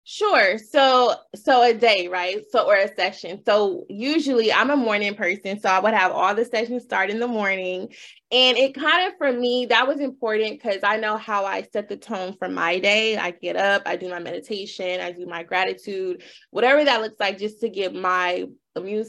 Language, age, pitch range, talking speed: English, 20-39, 190-230 Hz, 210 wpm